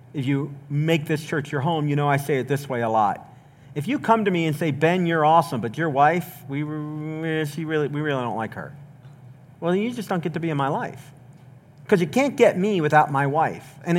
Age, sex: 40-59, male